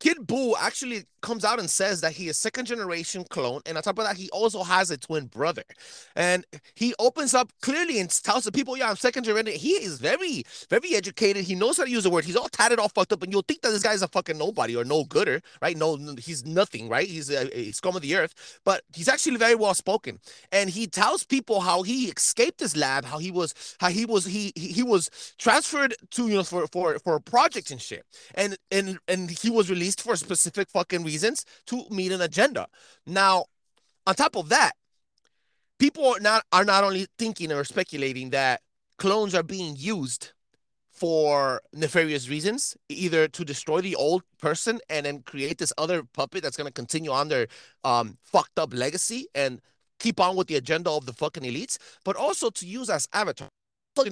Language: English